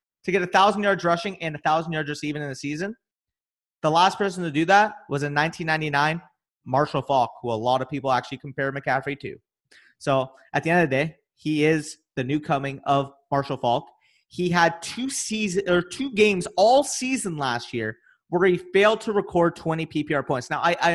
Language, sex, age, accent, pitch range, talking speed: English, male, 30-49, American, 145-195 Hz, 190 wpm